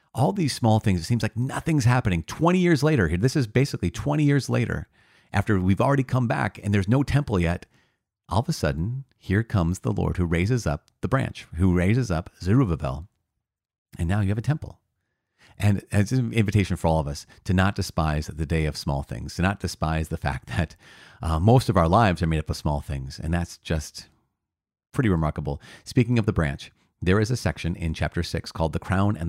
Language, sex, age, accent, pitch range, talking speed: English, male, 40-59, American, 85-115 Hz, 215 wpm